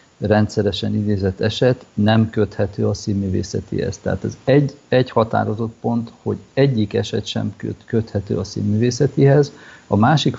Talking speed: 125 wpm